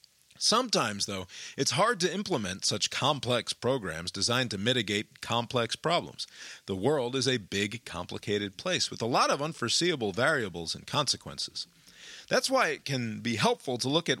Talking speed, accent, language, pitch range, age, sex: 160 wpm, American, English, 105-140 Hz, 40-59, male